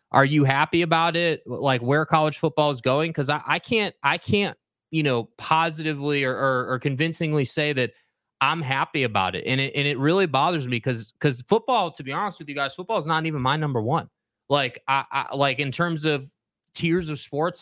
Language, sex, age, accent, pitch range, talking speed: English, male, 20-39, American, 130-160 Hz, 215 wpm